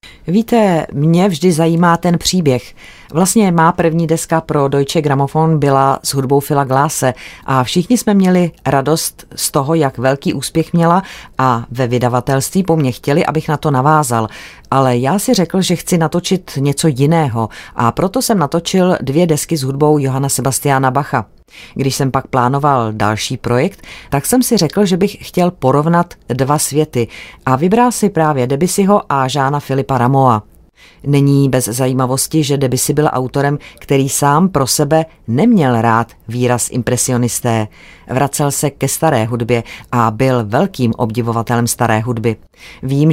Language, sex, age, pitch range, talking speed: Czech, female, 30-49, 125-160 Hz, 155 wpm